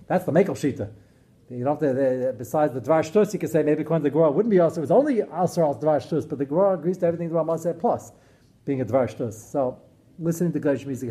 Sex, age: male, 40-59